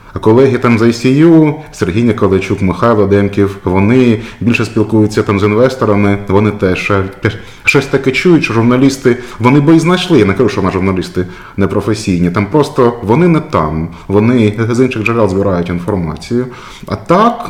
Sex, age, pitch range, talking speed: male, 30-49, 95-130 Hz, 155 wpm